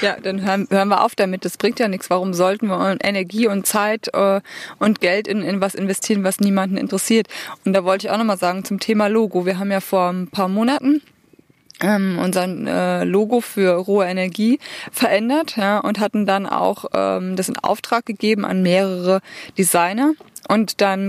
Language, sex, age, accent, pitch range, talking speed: German, female, 20-39, German, 190-225 Hz, 190 wpm